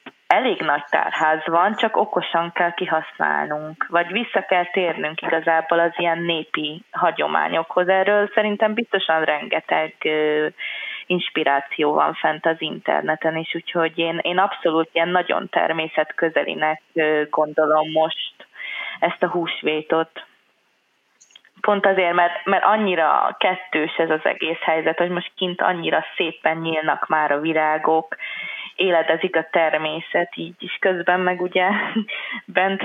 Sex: female